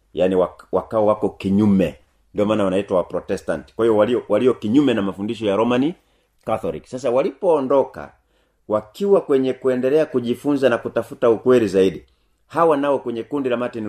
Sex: male